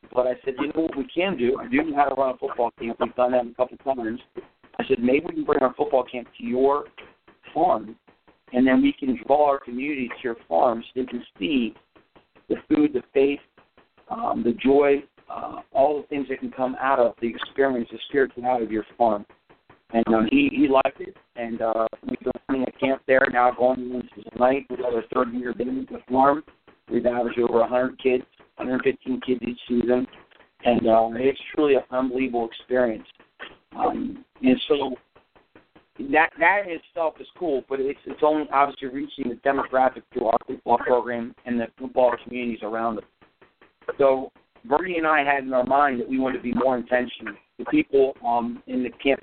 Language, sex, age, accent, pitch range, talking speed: English, male, 50-69, American, 120-140 Hz, 205 wpm